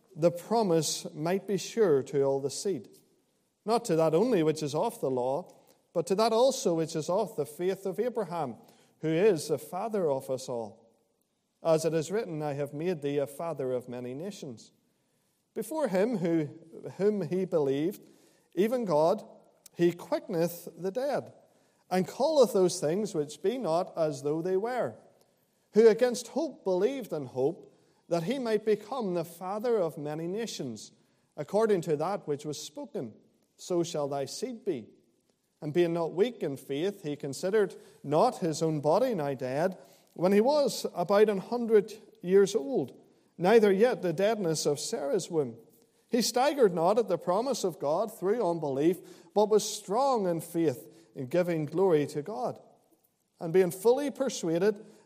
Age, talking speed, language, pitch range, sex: 40-59, 165 wpm, English, 155-215 Hz, male